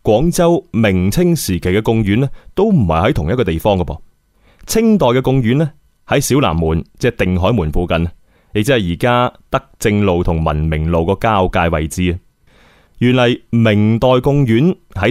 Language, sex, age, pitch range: Chinese, male, 20-39, 90-125 Hz